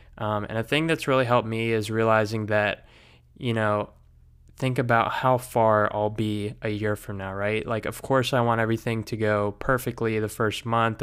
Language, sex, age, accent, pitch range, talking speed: English, male, 20-39, American, 105-115 Hz, 195 wpm